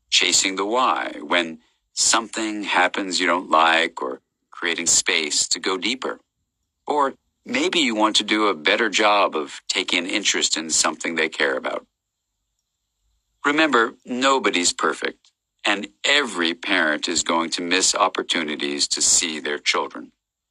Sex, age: male, 50-69